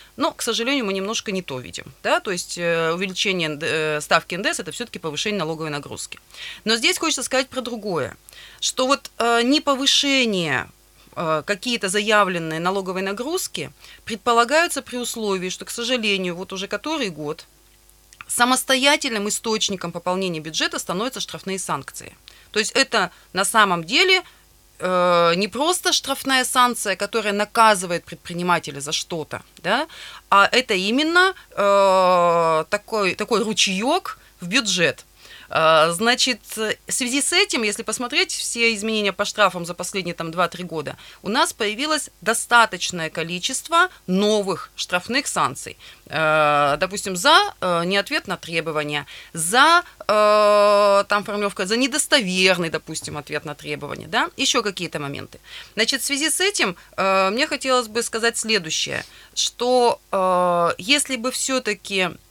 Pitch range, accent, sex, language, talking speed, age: 175-250 Hz, native, female, Russian, 125 wpm, 30-49